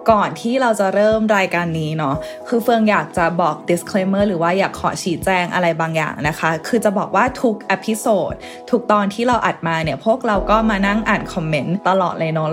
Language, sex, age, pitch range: Thai, female, 20-39, 165-205 Hz